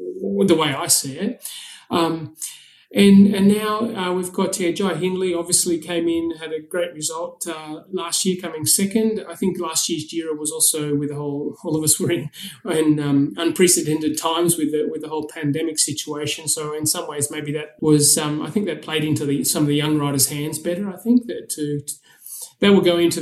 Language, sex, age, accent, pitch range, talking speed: English, male, 30-49, Australian, 150-180 Hz, 215 wpm